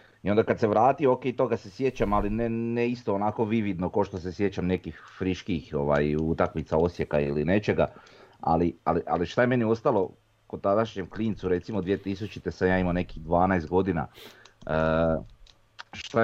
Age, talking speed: 30-49, 165 wpm